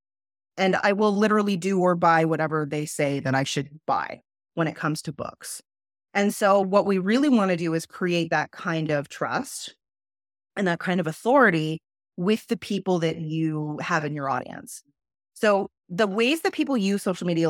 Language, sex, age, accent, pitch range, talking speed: English, female, 30-49, American, 135-200 Hz, 190 wpm